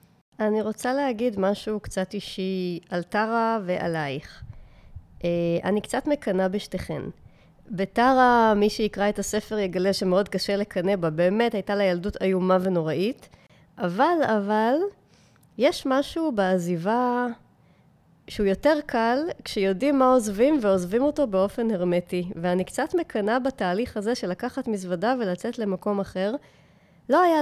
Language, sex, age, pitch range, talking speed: Hebrew, female, 30-49, 185-235 Hz, 125 wpm